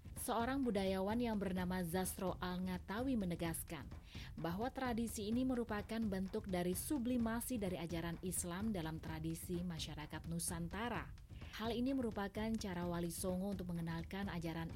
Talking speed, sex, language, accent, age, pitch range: 120 wpm, female, Indonesian, native, 30-49, 165-225 Hz